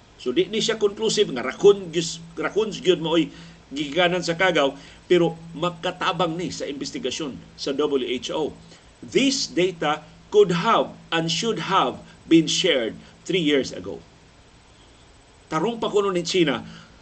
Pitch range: 145-195 Hz